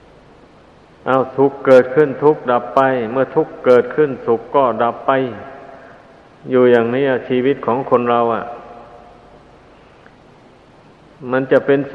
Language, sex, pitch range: Thai, male, 120-135 Hz